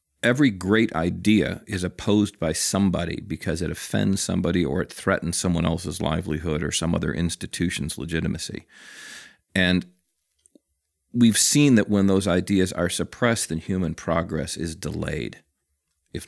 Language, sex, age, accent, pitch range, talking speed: English, male, 40-59, American, 80-100 Hz, 135 wpm